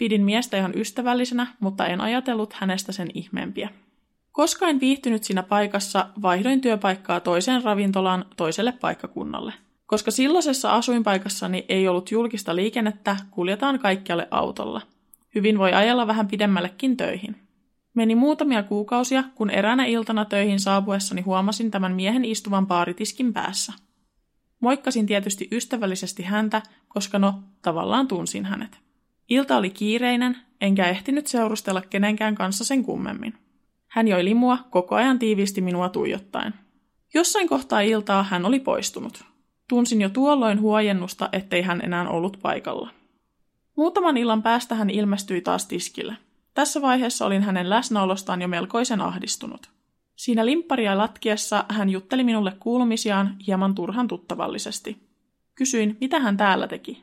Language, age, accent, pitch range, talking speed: Finnish, 20-39, native, 195-245 Hz, 130 wpm